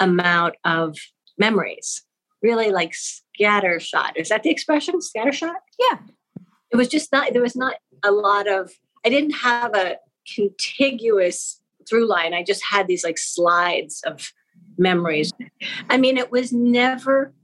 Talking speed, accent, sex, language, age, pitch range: 145 wpm, American, female, English, 50-69, 185-270 Hz